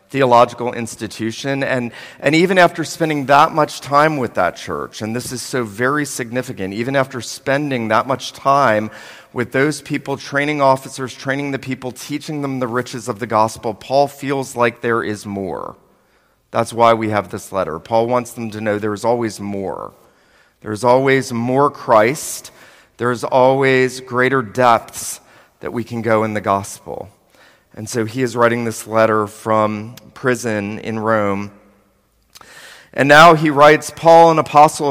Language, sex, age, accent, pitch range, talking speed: English, male, 40-59, American, 115-140 Hz, 165 wpm